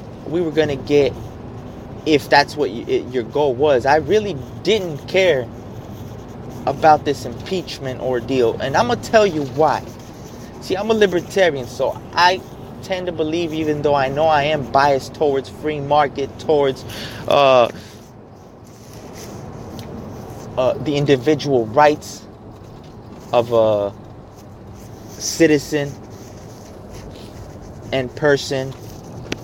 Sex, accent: male, American